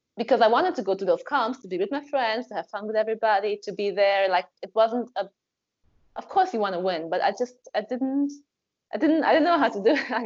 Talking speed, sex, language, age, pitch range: 265 wpm, female, English, 20-39, 180-225 Hz